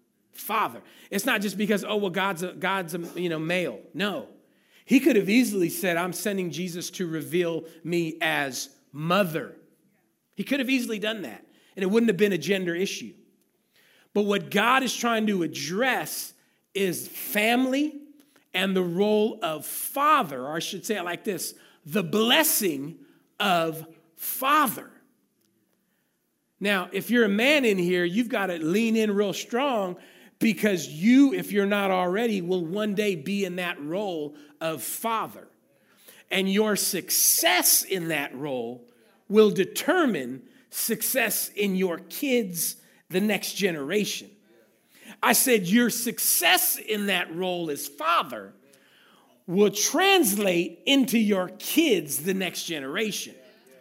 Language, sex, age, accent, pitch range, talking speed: English, male, 40-59, American, 180-230 Hz, 145 wpm